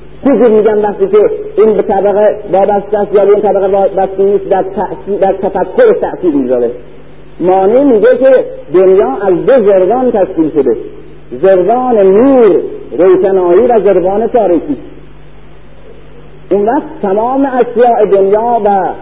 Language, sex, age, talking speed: Persian, male, 50-69, 130 wpm